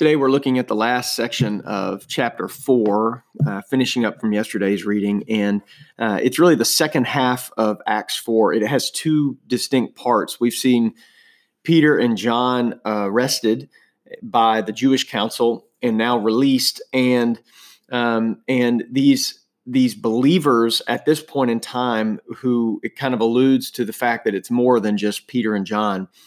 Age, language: 40-59, English